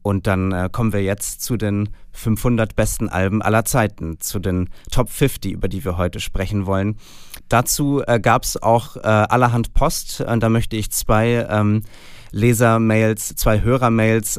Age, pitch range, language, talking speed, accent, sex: 30-49, 100-120 Hz, German, 165 wpm, German, male